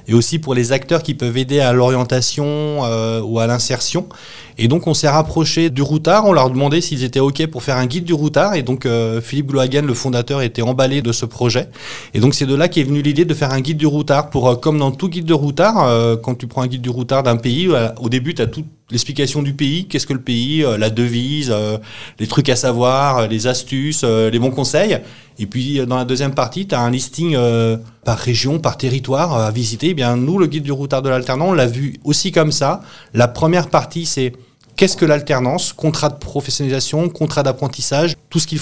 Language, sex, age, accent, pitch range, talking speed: French, male, 30-49, French, 125-155 Hz, 225 wpm